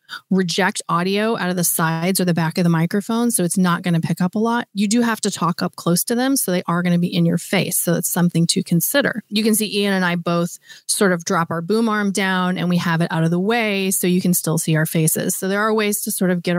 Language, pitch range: English, 170-200 Hz